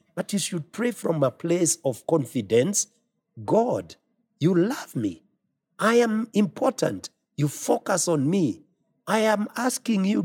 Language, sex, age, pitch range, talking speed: English, male, 50-69, 140-195 Hz, 140 wpm